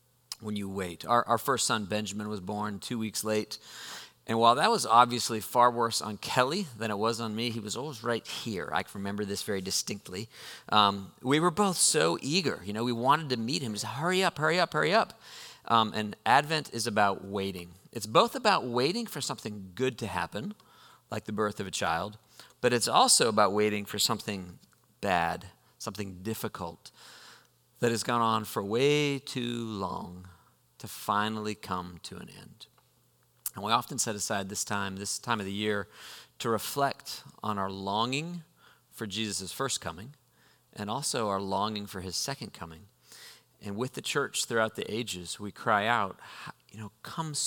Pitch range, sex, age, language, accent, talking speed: 100-120 Hz, male, 40-59, English, American, 185 wpm